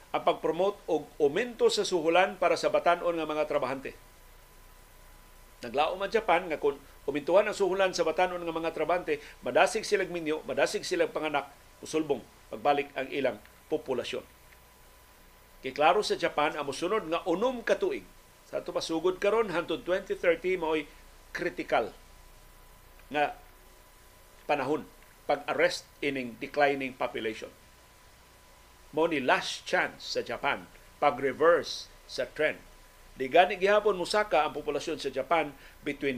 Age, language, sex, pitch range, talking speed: 50-69, Filipino, male, 145-200 Hz, 130 wpm